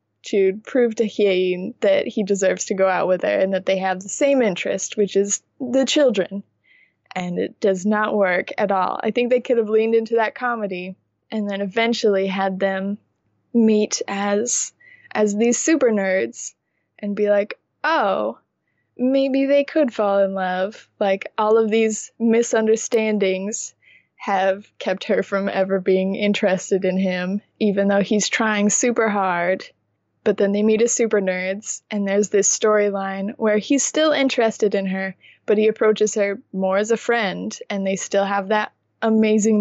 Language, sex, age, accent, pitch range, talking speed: English, female, 20-39, American, 195-235 Hz, 170 wpm